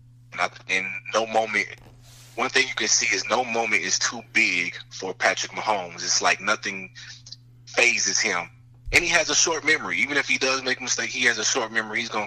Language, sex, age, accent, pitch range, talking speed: English, male, 20-39, American, 100-120 Hz, 215 wpm